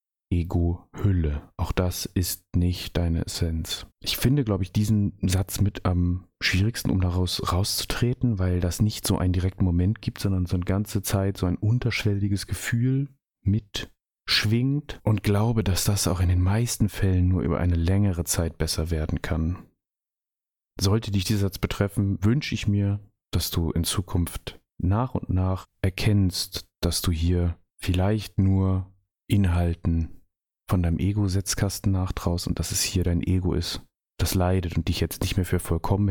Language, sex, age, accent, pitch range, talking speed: German, male, 30-49, German, 85-100 Hz, 165 wpm